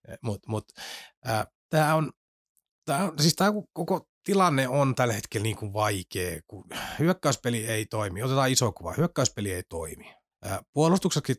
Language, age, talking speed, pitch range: Finnish, 30-49, 155 wpm, 100-120 Hz